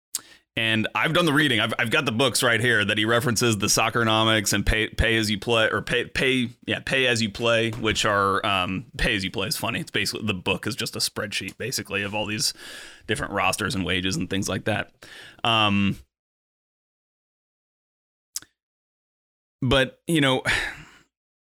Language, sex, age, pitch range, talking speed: English, male, 30-49, 100-115 Hz, 180 wpm